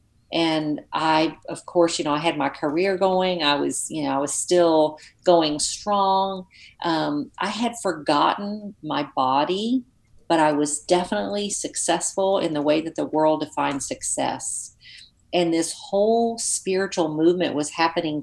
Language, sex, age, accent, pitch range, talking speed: English, female, 40-59, American, 155-190 Hz, 150 wpm